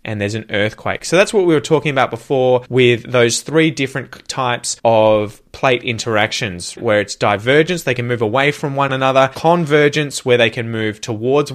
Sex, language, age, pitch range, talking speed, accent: male, English, 20-39, 110-140 Hz, 185 wpm, Australian